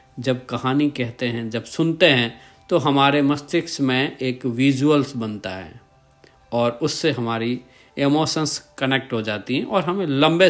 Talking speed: 150 wpm